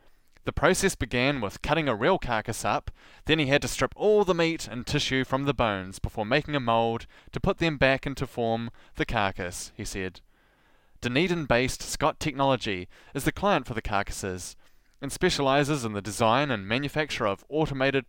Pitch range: 110-140 Hz